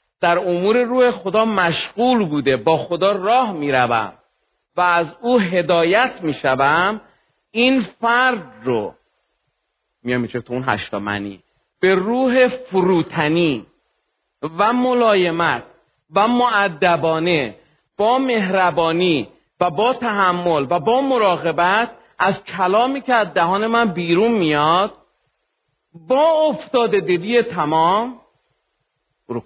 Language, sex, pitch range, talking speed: Persian, male, 150-210 Hz, 105 wpm